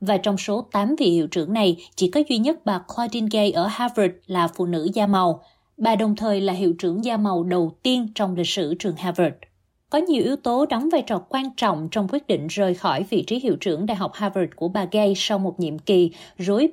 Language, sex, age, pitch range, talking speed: Vietnamese, female, 20-39, 180-230 Hz, 235 wpm